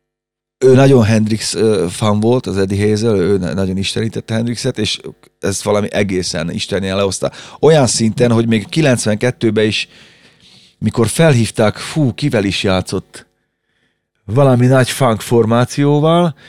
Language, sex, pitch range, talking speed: Hungarian, male, 100-125 Hz, 120 wpm